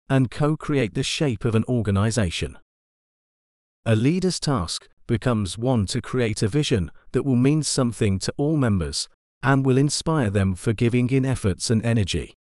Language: English